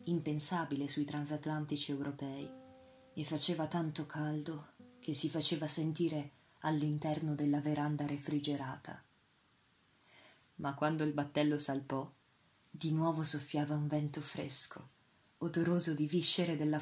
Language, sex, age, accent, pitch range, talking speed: Italian, female, 30-49, native, 145-165 Hz, 110 wpm